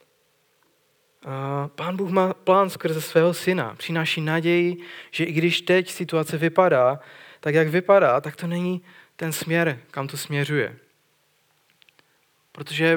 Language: Czech